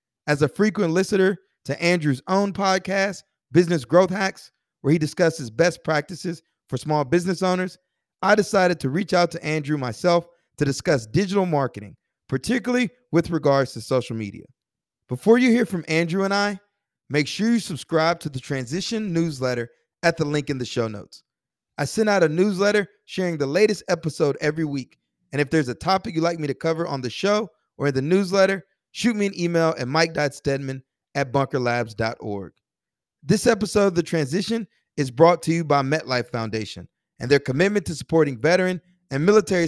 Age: 30-49